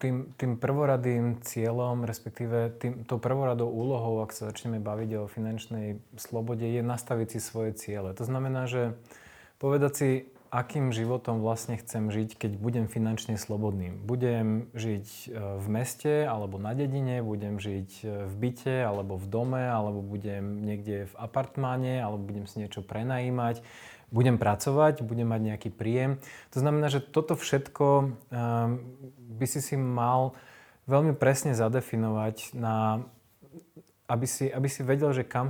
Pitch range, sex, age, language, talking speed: 110-130 Hz, male, 20-39, Slovak, 150 wpm